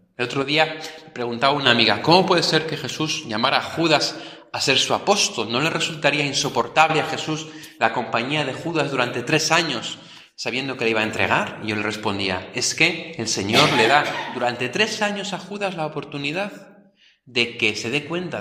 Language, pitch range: Spanish, 115-165 Hz